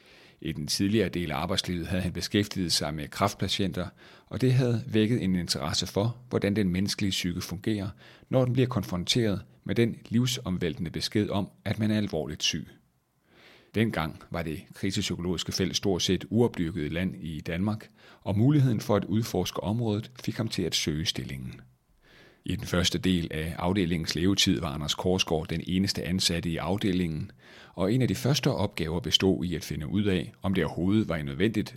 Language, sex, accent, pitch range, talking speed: Danish, male, native, 85-110 Hz, 175 wpm